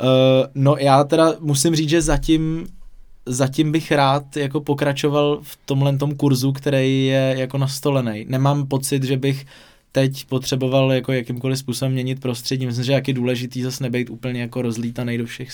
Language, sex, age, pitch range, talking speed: Czech, male, 20-39, 115-130 Hz, 170 wpm